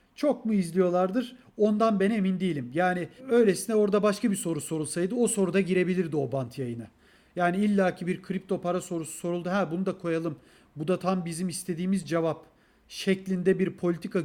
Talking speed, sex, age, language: 170 wpm, male, 40-59, Turkish